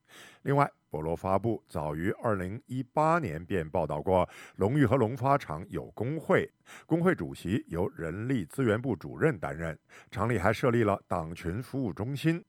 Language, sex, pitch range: Chinese, male, 90-130 Hz